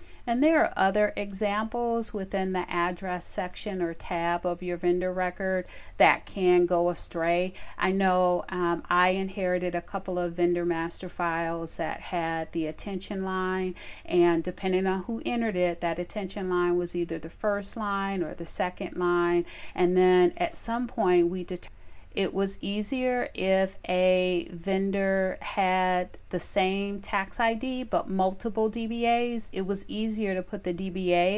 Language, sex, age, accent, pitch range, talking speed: English, female, 40-59, American, 175-195 Hz, 155 wpm